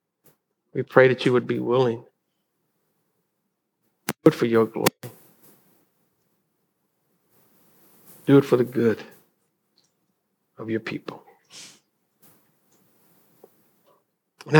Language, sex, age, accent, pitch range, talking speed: English, male, 60-79, American, 130-155 Hz, 85 wpm